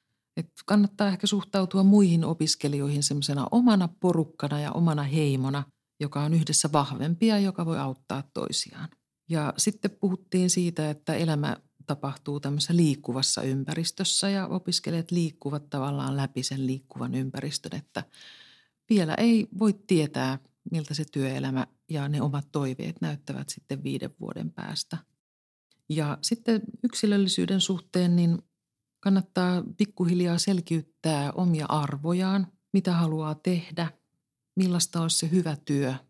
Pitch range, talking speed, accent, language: 140-180 Hz, 120 wpm, native, Finnish